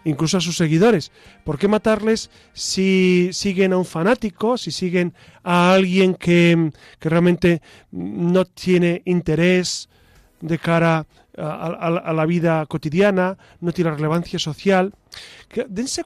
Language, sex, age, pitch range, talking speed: Spanish, male, 40-59, 160-200 Hz, 130 wpm